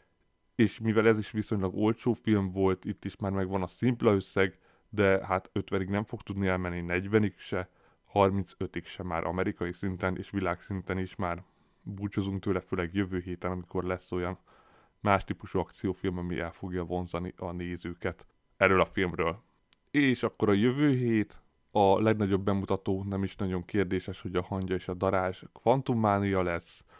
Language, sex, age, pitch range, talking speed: Hungarian, male, 20-39, 90-105 Hz, 160 wpm